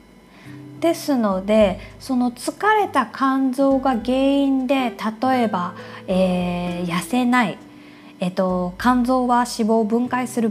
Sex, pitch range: female, 190-250 Hz